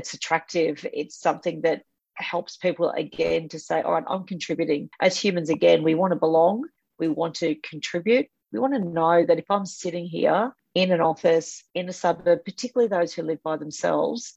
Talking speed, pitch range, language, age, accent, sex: 190 wpm, 160-185 Hz, English, 40-59, Australian, female